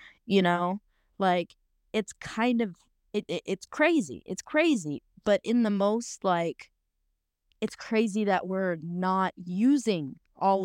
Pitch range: 180-225 Hz